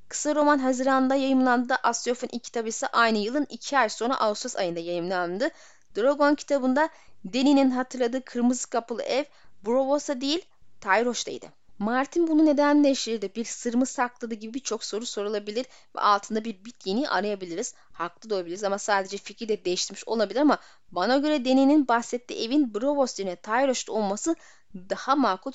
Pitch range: 205-265 Hz